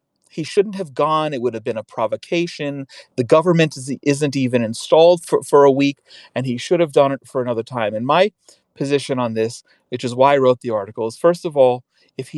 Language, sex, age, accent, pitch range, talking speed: English, male, 40-59, American, 130-185 Hz, 225 wpm